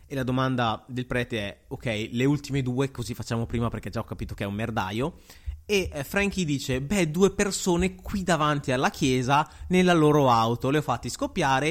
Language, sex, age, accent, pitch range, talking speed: Italian, male, 20-39, native, 105-145 Hz, 195 wpm